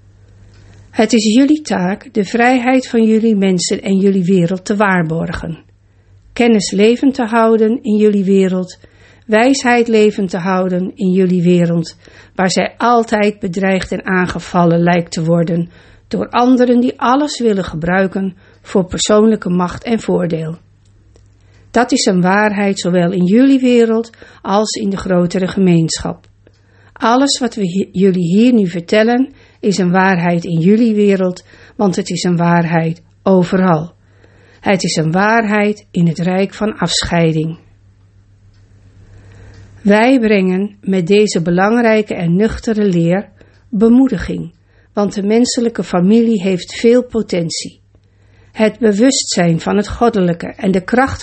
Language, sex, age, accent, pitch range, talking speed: Dutch, female, 50-69, Dutch, 170-220 Hz, 130 wpm